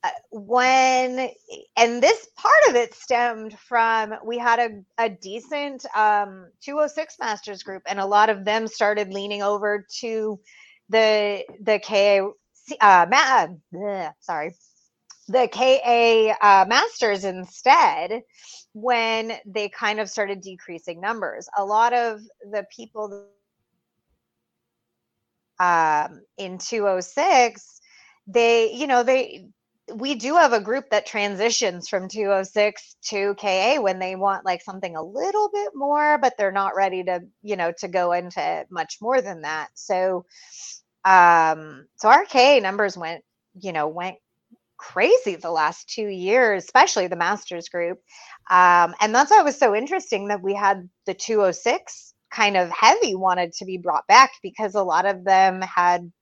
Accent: American